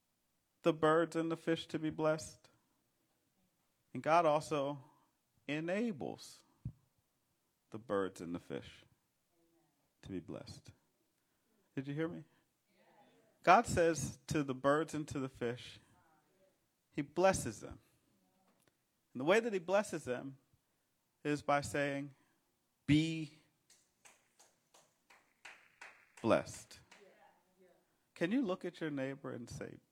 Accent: American